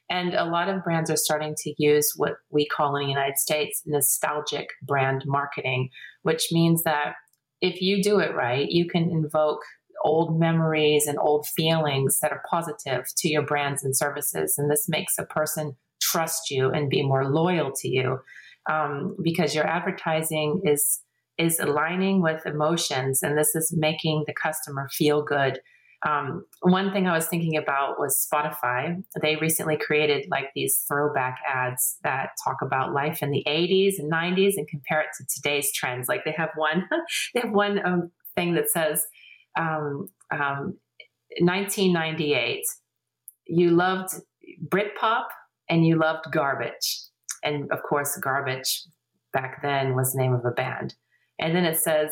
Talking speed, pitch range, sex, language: 160 wpm, 145-170 Hz, female, German